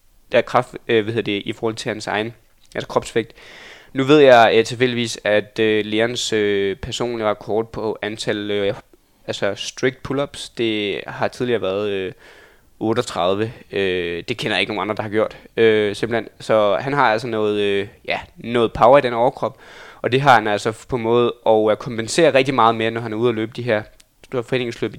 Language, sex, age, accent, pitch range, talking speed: Danish, male, 20-39, native, 105-120 Hz, 200 wpm